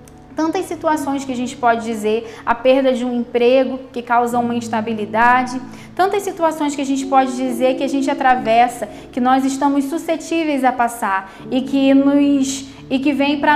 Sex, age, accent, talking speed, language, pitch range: female, 20-39, Brazilian, 175 wpm, Portuguese, 230-280 Hz